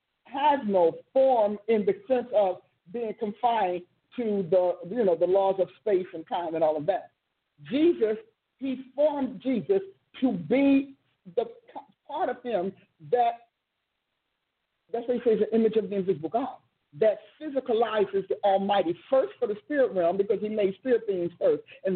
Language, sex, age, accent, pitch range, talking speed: English, male, 50-69, American, 205-300 Hz, 165 wpm